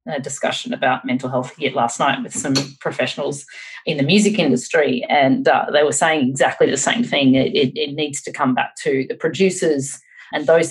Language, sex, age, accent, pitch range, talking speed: English, female, 30-49, Australian, 135-200 Hz, 200 wpm